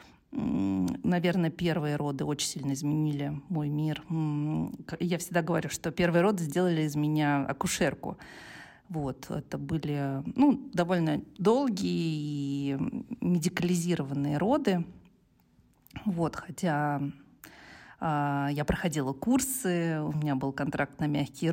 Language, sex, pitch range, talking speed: Russian, female, 150-185 Hz, 105 wpm